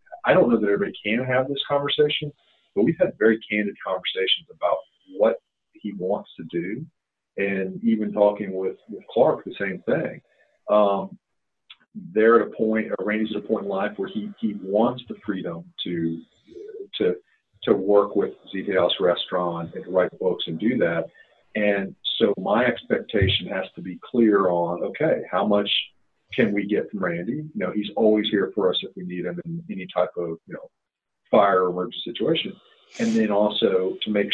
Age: 40-59